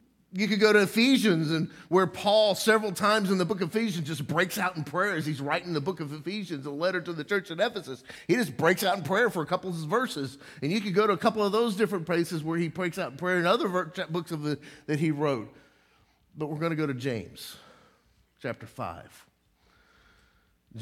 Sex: male